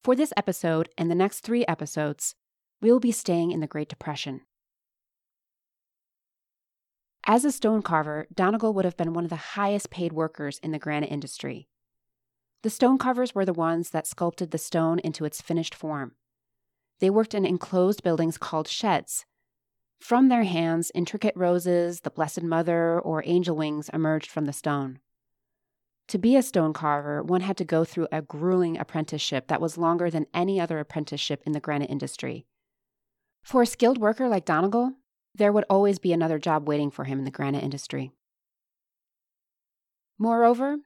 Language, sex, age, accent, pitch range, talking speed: English, female, 30-49, American, 150-200 Hz, 165 wpm